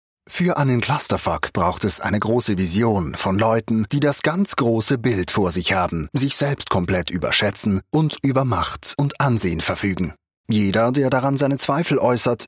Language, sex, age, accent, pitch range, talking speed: German, male, 30-49, German, 100-140 Hz, 165 wpm